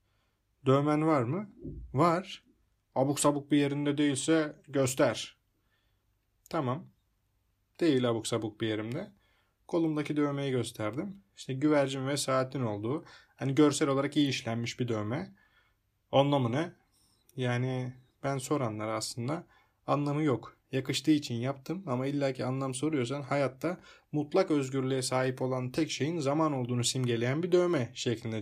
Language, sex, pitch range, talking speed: Turkish, male, 120-145 Hz, 125 wpm